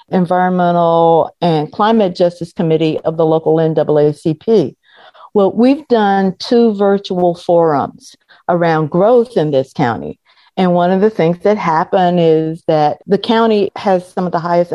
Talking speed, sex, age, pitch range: 145 wpm, female, 50-69, 160-200 Hz